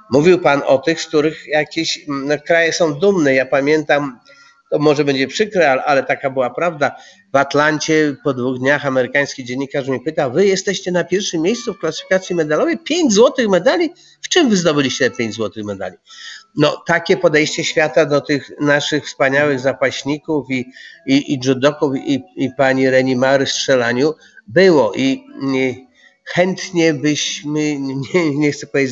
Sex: male